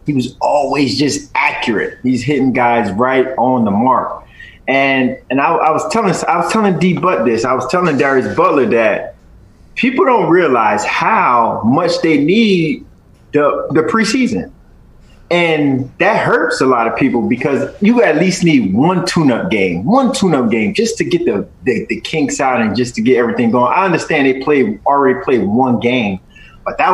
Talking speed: 180 wpm